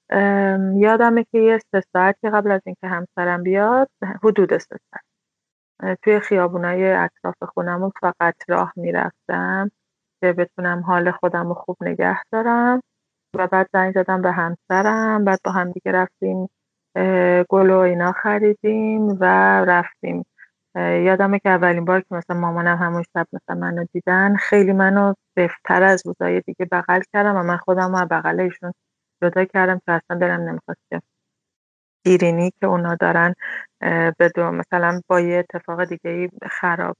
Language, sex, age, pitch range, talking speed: Persian, female, 30-49, 175-195 Hz, 140 wpm